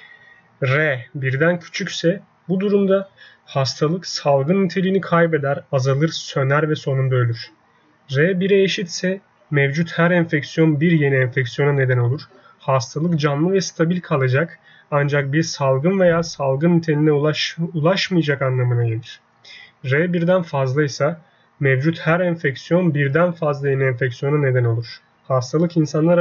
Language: Turkish